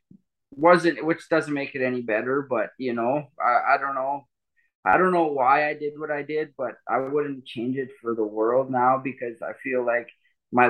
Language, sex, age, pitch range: English, male, 20-39, 120-155 Hz